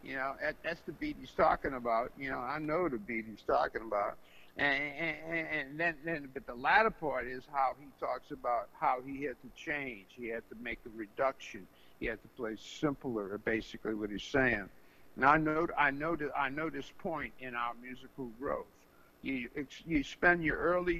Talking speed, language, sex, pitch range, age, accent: 195 wpm, English, male, 115-165 Hz, 50-69, American